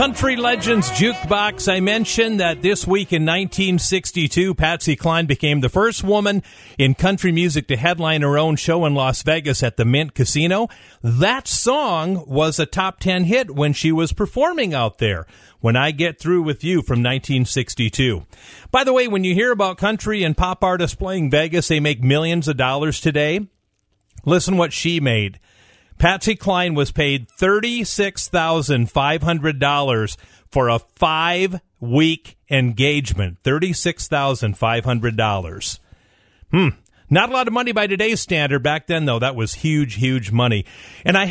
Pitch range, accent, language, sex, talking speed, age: 125-185 Hz, American, English, male, 150 wpm, 40-59